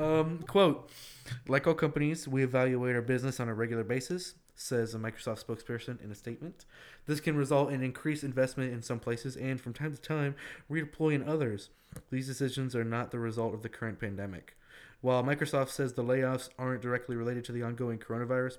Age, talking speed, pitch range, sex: 20-39, 190 wpm, 115-135 Hz, male